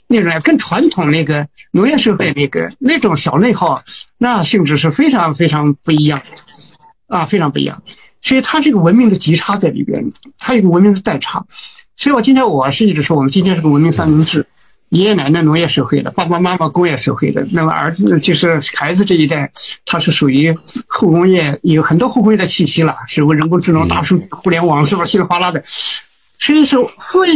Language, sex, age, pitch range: Chinese, male, 50-69, 155-230 Hz